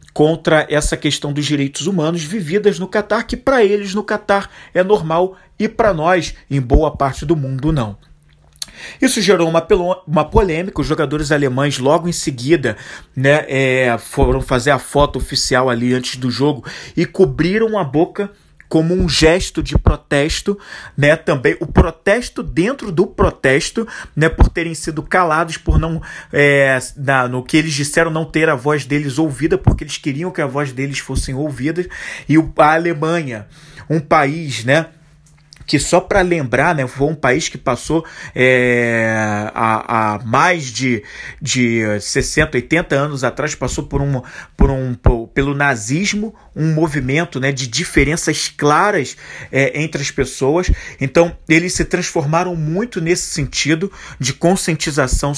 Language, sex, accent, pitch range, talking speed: Portuguese, male, Brazilian, 140-175 Hz, 160 wpm